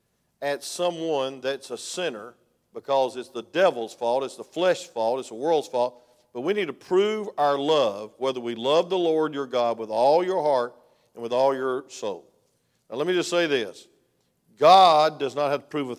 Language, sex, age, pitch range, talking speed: English, male, 50-69, 130-190 Hz, 205 wpm